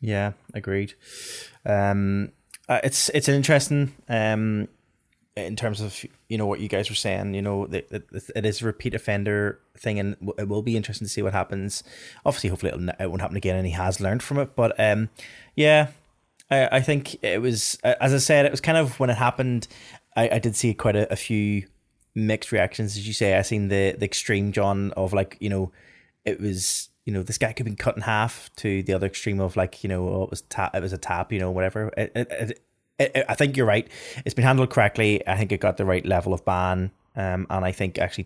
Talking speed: 230 wpm